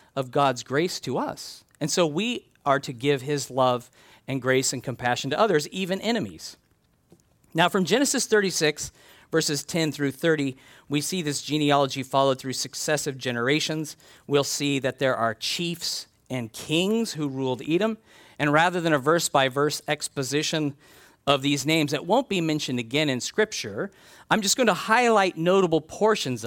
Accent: American